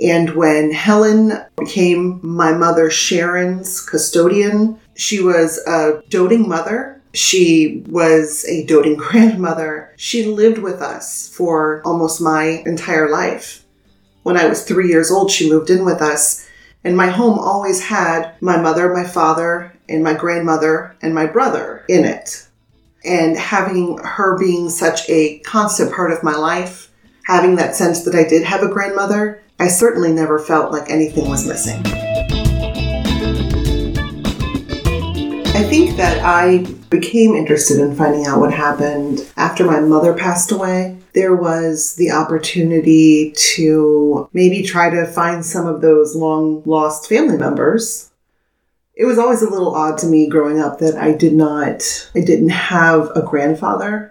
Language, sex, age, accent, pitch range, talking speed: English, female, 30-49, American, 155-185 Hz, 145 wpm